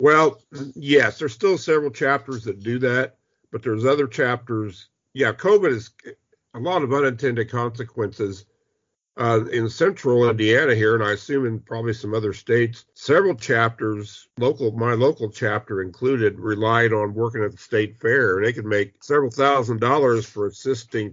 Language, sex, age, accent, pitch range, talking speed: English, male, 50-69, American, 105-125 Hz, 160 wpm